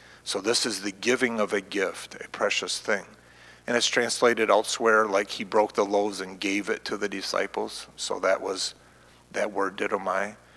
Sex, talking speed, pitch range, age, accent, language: male, 180 wpm, 95-130 Hz, 40-59, American, English